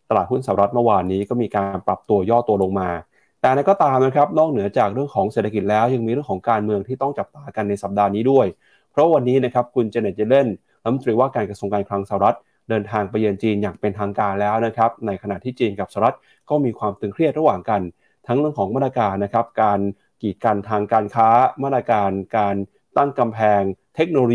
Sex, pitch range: male, 100-130 Hz